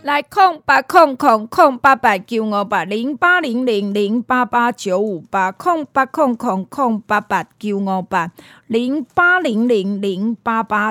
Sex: female